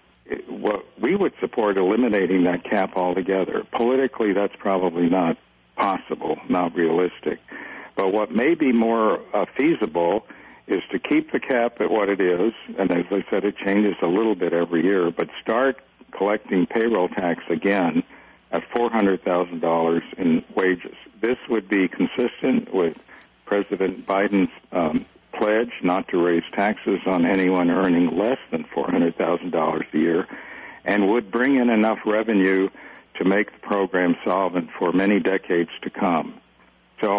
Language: English